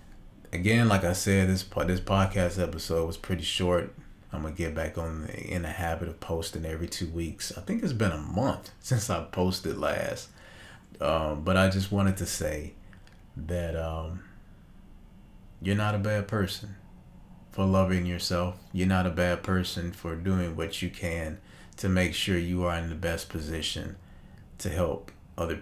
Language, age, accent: English, 30-49, American